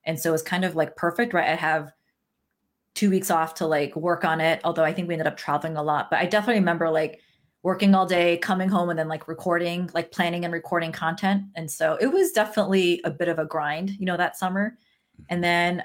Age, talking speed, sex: 30-49, 240 wpm, female